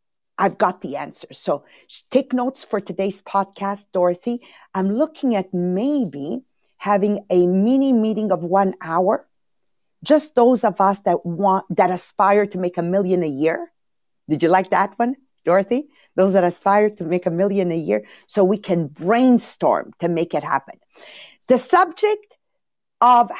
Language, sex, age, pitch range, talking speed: English, female, 50-69, 190-255 Hz, 160 wpm